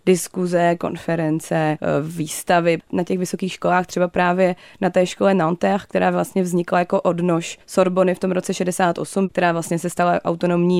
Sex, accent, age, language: female, native, 20-39, Czech